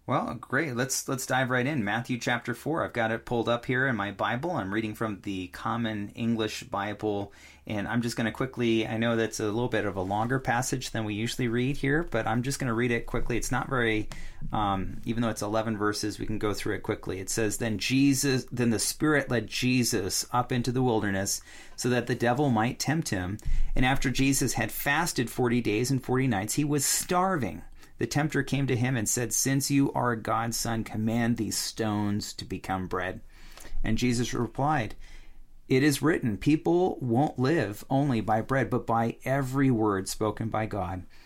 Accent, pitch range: American, 110-135 Hz